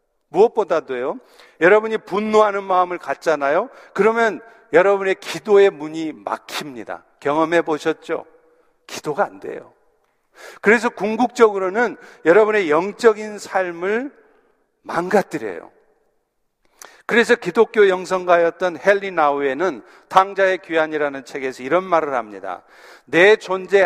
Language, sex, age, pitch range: Korean, male, 50-69, 160-220 Hz